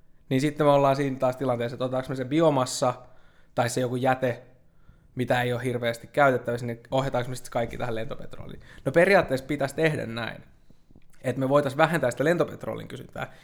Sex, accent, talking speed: male, native, 175 wpm